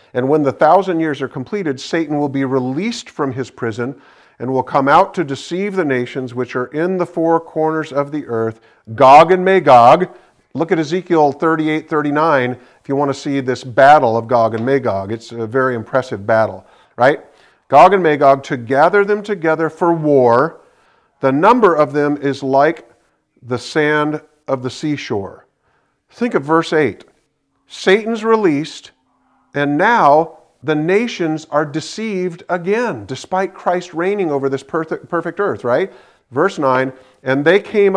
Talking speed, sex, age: 160 wpm, male, 50-69